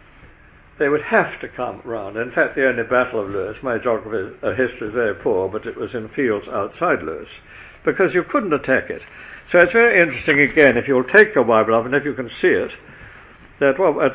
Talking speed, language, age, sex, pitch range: 220 wpm, English, 60-79, male, 120-170 Hz